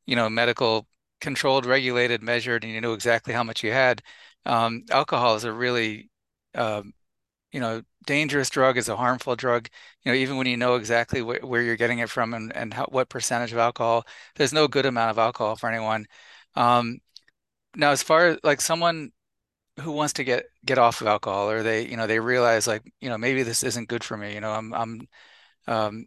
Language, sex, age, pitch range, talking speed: English, male, 30-49, 115-130 Hz, 205 wpm